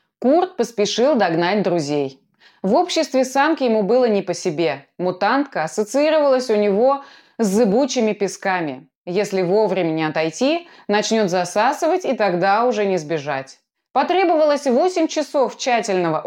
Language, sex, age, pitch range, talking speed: Russian, female, 20-39, 180-270 Hz, 125 wpm